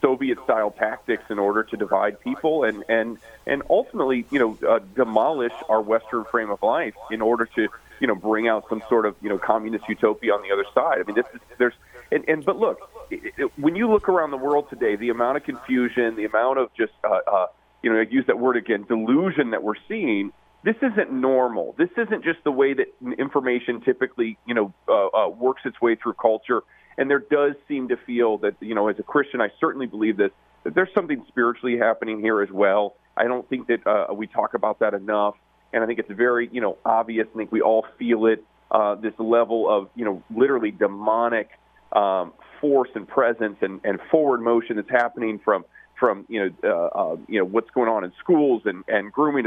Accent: American